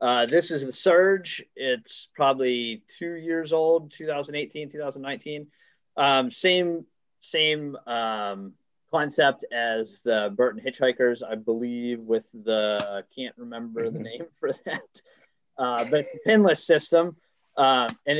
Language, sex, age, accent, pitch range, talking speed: English, male, 30-49, American, 120-155 Hz, 130 wpm